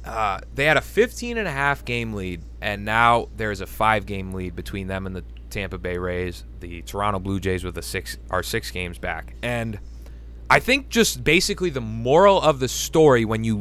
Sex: male